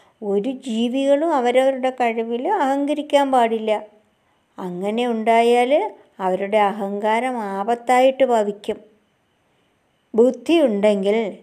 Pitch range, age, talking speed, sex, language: 205-245 Hz, 60-79, 65 wpm, male, Malayalam